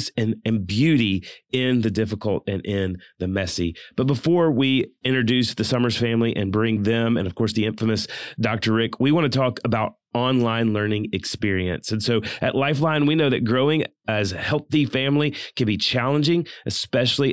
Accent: American